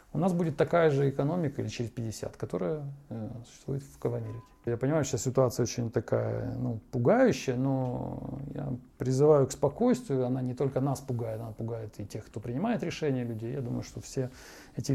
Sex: male